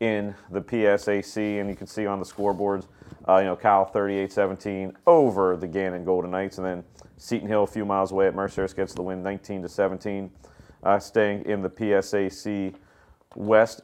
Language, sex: English, male